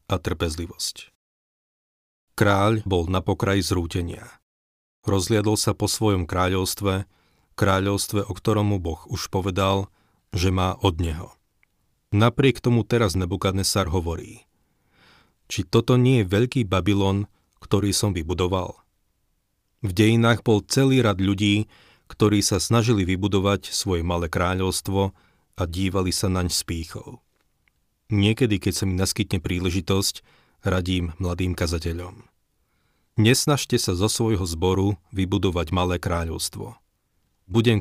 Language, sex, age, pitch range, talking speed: Slovak, male, 40-59, 90-105 Hz, 115 wpm